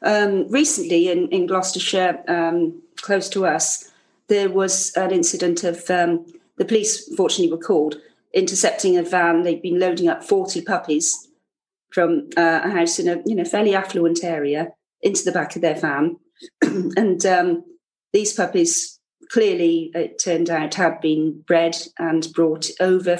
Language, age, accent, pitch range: English, 40-59, British, 170-225 Hz